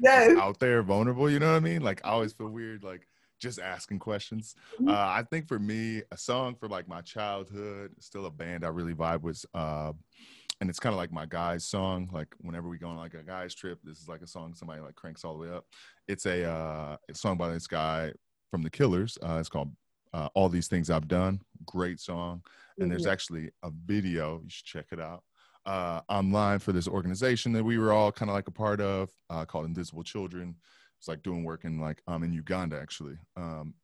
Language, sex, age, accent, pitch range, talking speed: English, male, 20-39, American, 80-100 Hz, 225 wpm